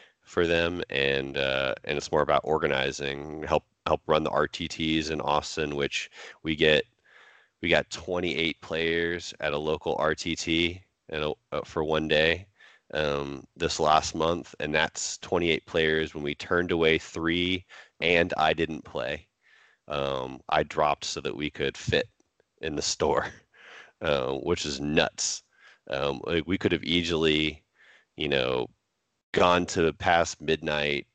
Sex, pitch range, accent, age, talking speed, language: male, 70-80 Hz, American, 30-49, 150 wpm, English